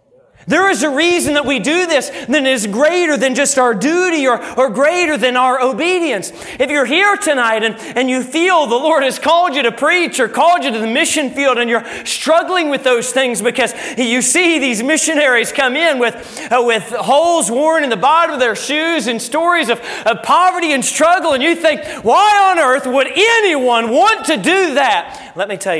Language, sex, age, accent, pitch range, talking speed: English, male, 30-49, American, 170-280 Hz, 205 wpm